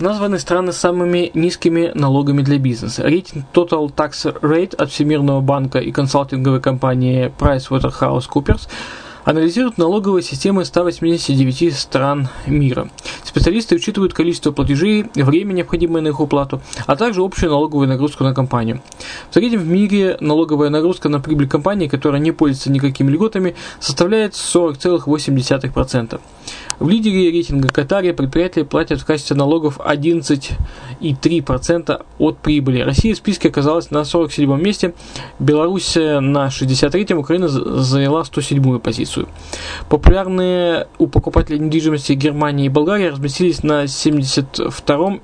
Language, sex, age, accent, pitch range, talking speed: Russian, male, 20-39, native, 140-170 Hz, 120 wpm